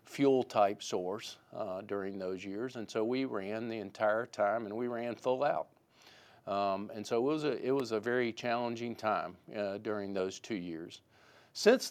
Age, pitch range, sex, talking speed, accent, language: 50-69, 115-140 Hz, male, 185 wpm, American, English